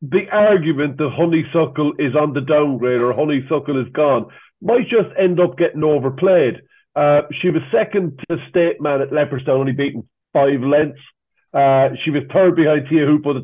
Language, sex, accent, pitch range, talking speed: English, male, Irish, 130-160 Hz, 175 wpm